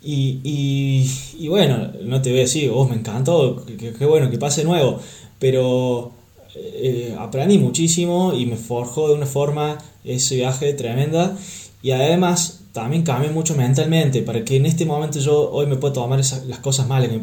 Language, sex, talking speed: Spanish, male, 180 wpm